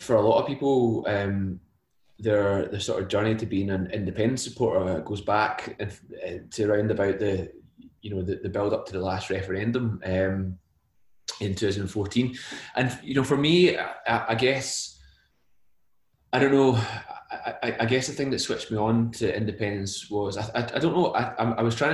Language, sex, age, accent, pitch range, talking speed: English, male, 20-39, British, 95-115 Hz, 190 wpm